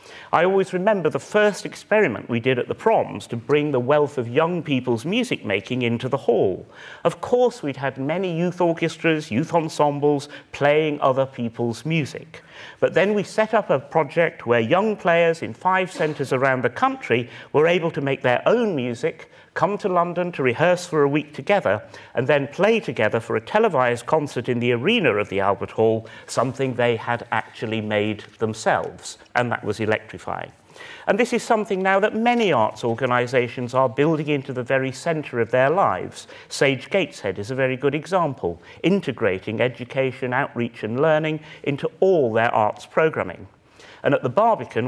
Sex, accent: male, British